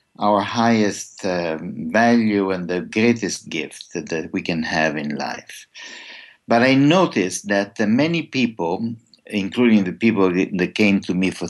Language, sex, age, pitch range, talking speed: English, male, 60-79, 95-120 Hz, 150 wpm